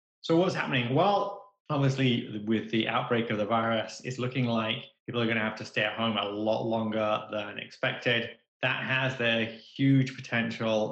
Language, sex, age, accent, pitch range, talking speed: English, male, 20-39, British, 110-130 Hz, 180 wpm